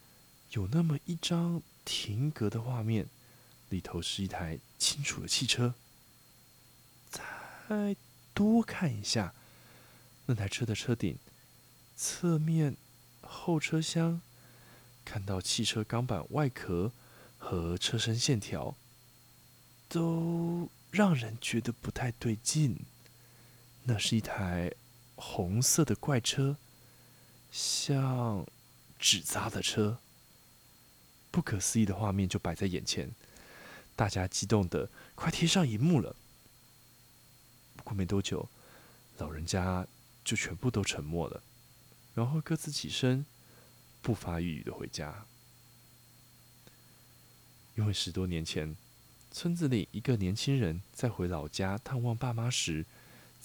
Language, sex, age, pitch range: Chinese, male, 20-39, 100-135 Hz